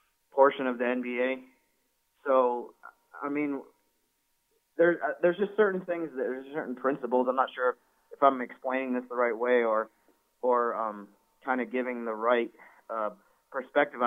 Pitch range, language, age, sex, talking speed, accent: 110-130 Hz, English, 30-49, male, 155 wpm, American